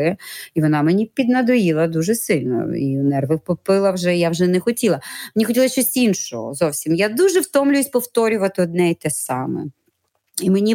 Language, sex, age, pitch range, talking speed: Ukrainian, female, 30-49, 160-235 Hz, 160 wpm